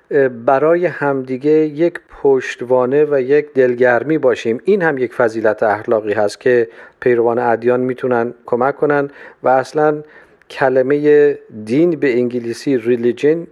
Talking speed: 120 wpm